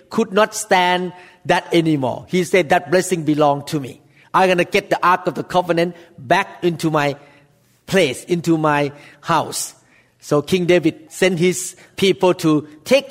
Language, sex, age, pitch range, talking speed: English, male, 50-69, 165-205 Hz, 165 wpm